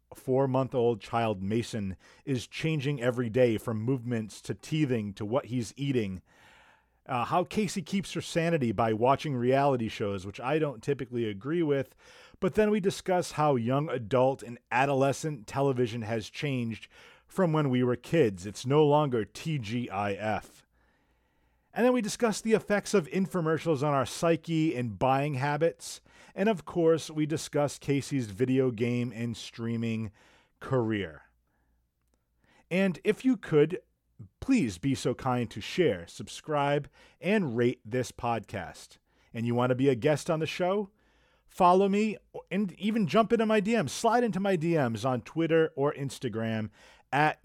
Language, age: English, 40-59